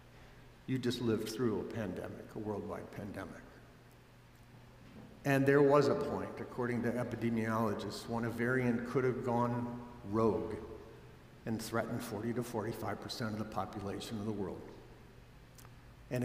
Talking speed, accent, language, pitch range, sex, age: 135 wpm, American, English, 110-160 Hz, male, 60-79